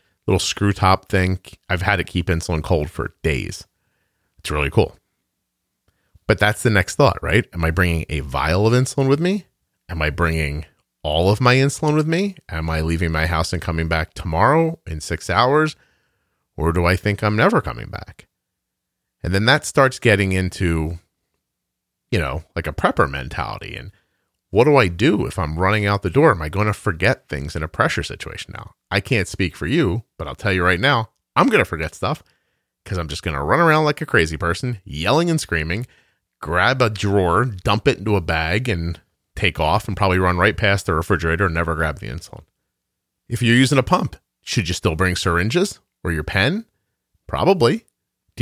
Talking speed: 200 wpm